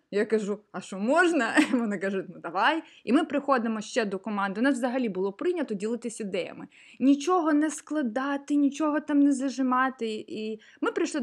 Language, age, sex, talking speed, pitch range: Ukrainian, 20-39, female, 170 wpm, 210-275 Hz